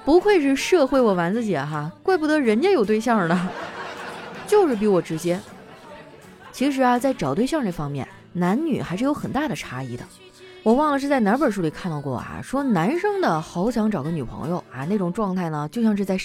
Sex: female